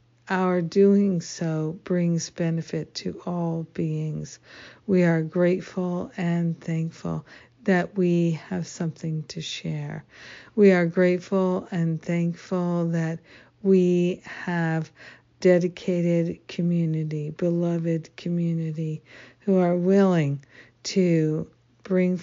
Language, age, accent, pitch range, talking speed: English, 60-79, American, 155-180 Hz, 95 wpm